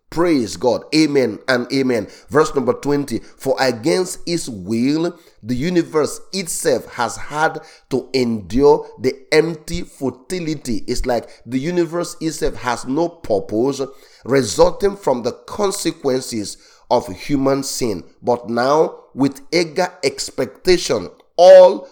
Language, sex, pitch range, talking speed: English, male, 120-170 Hz, 120 wpm